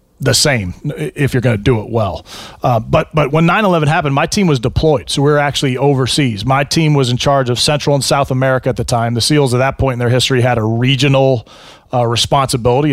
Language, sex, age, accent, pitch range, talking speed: English, male, 30-49, American, 125-145 Hz, 230 wpm